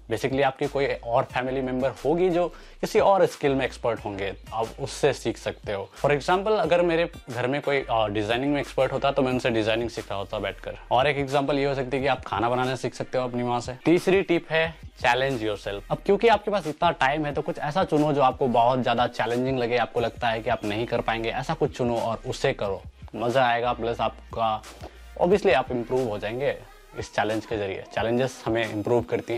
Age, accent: 20-39, native